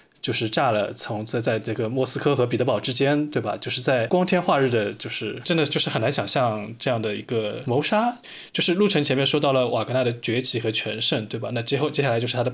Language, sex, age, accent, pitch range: Chinese, male, 20-39, native, 120-170 Hz